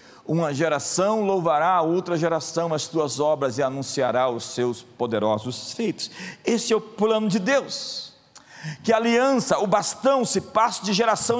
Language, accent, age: Portuguese, Brazilian, 40-59